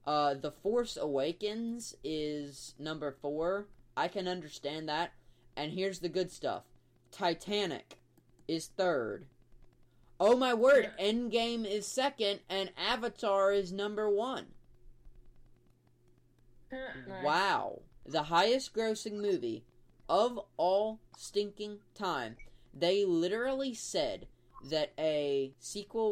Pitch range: 125-195 Hz